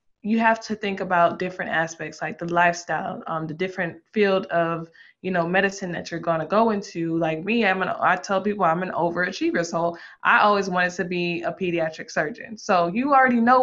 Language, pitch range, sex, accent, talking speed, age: English, 175-200 Hz, female, American, 200 wpm, 20-39